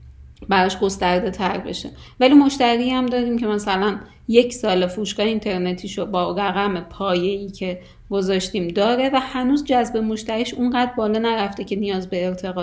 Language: Persian